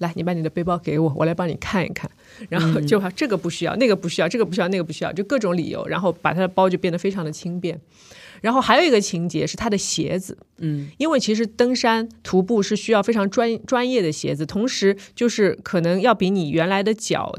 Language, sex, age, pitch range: Chinese, female, 20-39, 170-225 Hz